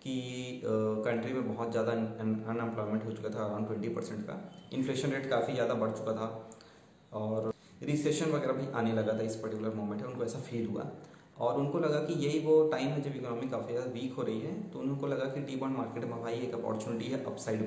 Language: Hindi